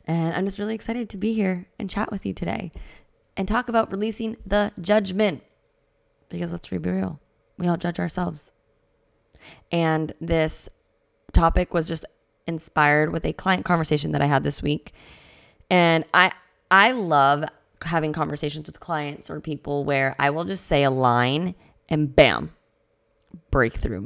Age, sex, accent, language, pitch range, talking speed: 20-39, female, American, English, 140-180 Hz, 155 wpm